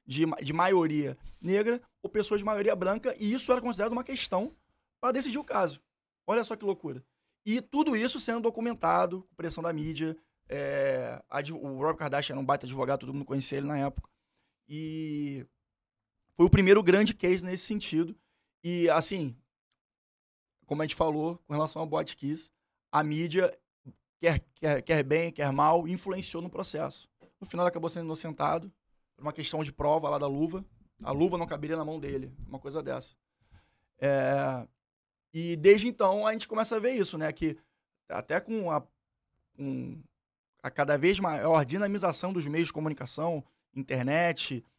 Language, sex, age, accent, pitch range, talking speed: Portuguese, male, 20-39, Brazilian, 140-195 Hz, 165 wpm